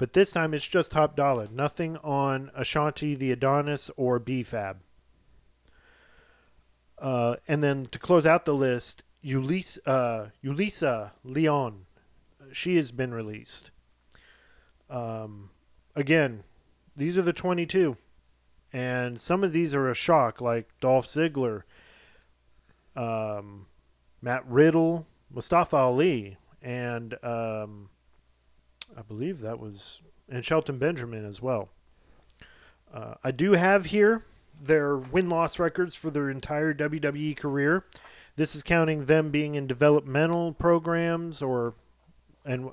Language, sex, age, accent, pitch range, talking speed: English, male, 40-59, American, 110-155 Hz, 120 wpm